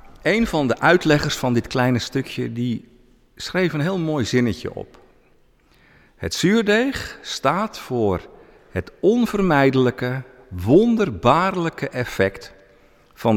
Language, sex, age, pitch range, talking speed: Dutch, male, 50-69, 100-160 Hz, 110 wpm